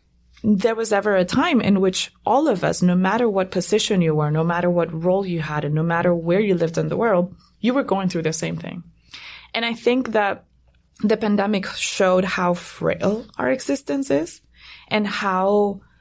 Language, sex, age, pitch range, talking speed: English, female, 20-39, 170-210 Hz, 195 wpm